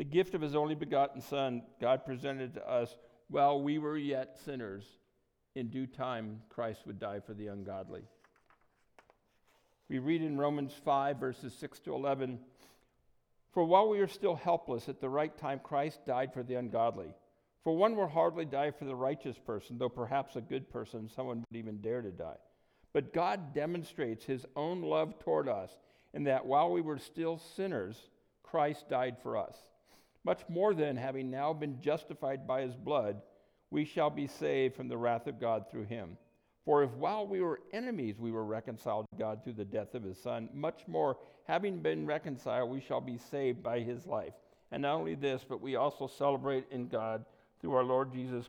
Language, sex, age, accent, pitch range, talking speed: English, male, 60-79, American, 115-145 Hz, 190 wpm